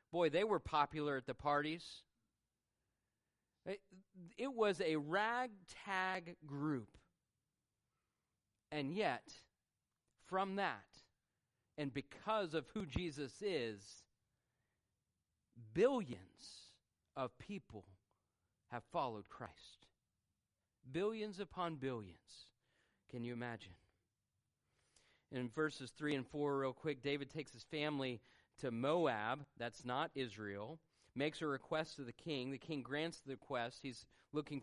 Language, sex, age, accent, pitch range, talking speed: English, male, 40-59, American, 120-175 Hz, 110 wpm